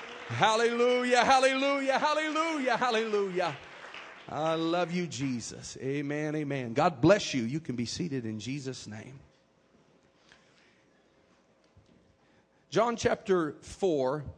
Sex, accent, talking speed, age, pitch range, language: male, American, 95 wpm, 40-59, 130-170 Hz, English